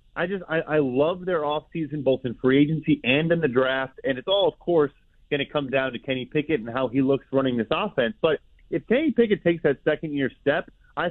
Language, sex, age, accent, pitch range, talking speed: English, male, 30-49, American, 135-170 Hz, 240 wpm